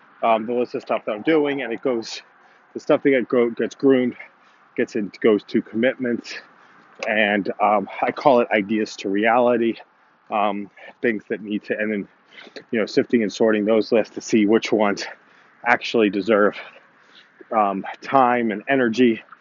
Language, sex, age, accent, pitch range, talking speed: English, male, 30-49, American, 110-125 Hz, 165 wpm